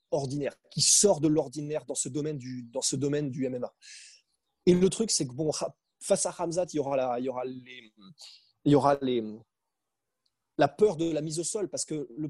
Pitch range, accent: 150-195 Hz, French